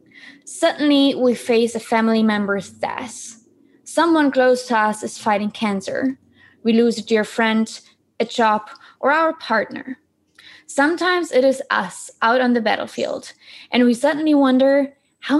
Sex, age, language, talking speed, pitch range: female, 20-39, English, 145 wpm, 225-280 Hz